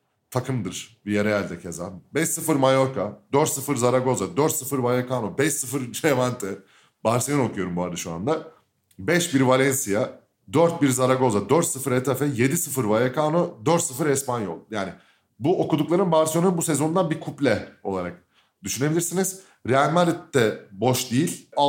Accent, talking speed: native, 130 wpm